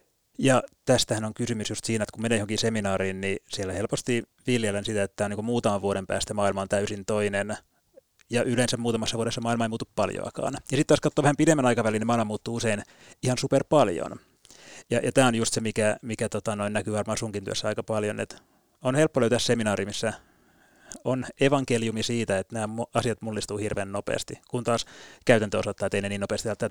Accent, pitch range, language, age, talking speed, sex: native, 105-135 Hz, Finnish, 30-49, 200 wpm, male